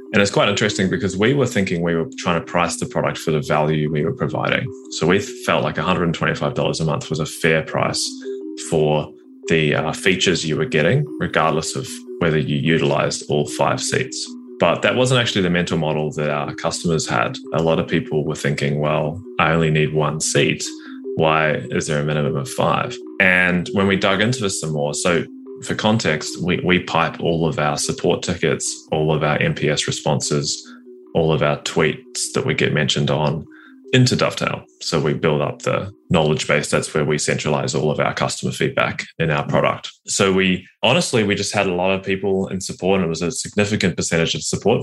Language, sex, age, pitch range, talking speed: English, male, 20-39, 75-95 Hz, 200 wpm